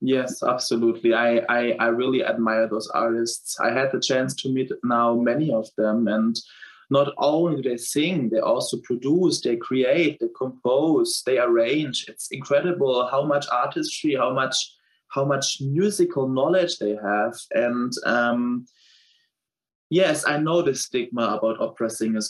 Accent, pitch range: German, 120-145 Hz